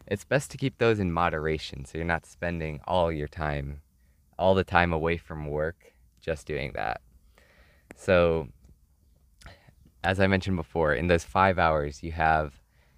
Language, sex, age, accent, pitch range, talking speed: English, male, 20-39, American, 75-90 Hz, 155 wpm